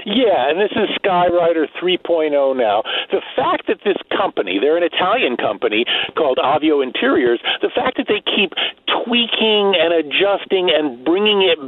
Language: English